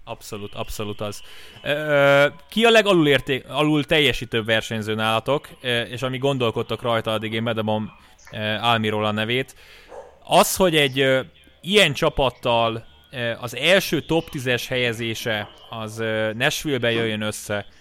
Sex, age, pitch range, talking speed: male, 20-39, 115-145 Hz, 110 wpm